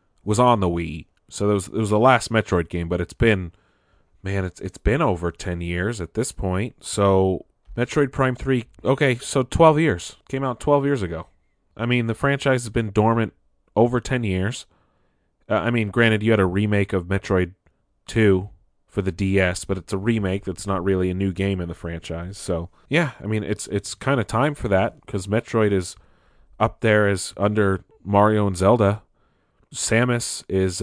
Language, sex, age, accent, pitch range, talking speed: English, male, 30-49, American, 90-115 Hz, 195 wpm